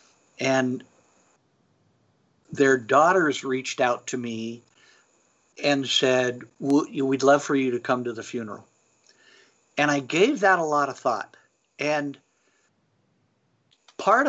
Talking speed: 120 wpm